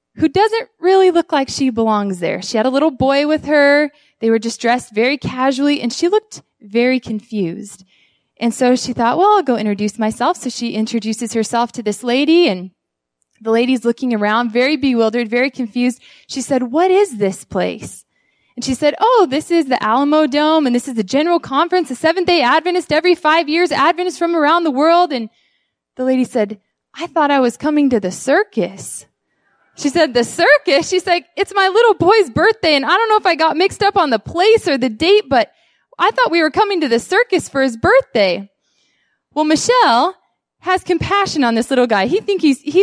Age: 20-39